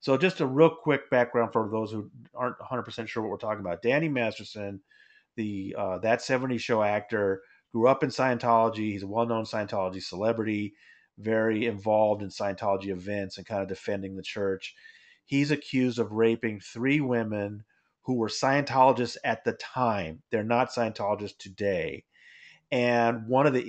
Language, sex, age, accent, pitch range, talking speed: English, male, 40-59, American, 105-130 Hz, 160 wpm